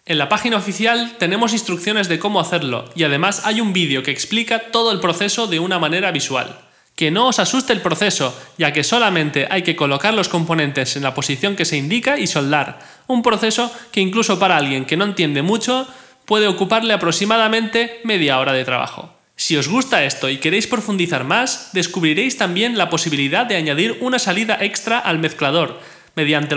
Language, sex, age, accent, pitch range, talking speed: Spanish, male, 20-39, Spanish, 155-225 Hz, 185 wpm